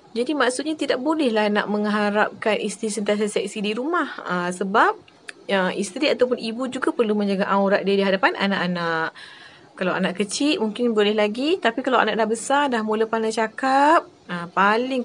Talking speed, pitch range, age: 170 wpm, 195-265 Hz, 20-39